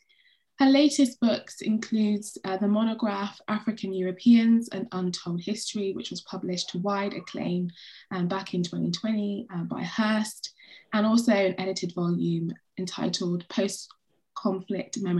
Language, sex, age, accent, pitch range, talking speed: English, female, 20-39, British, 185-235 Hz, 125 wpm